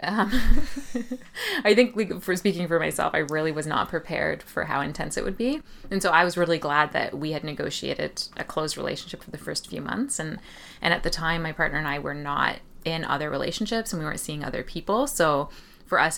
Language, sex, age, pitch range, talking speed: English, female, 20-39, 150-175 Hz, 225 wpm